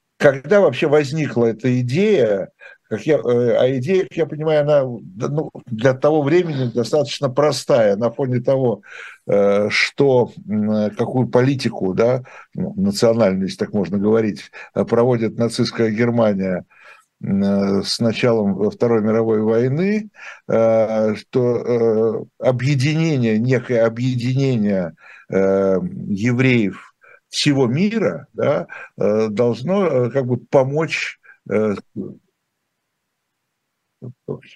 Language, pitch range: Russian, 110-150 Hz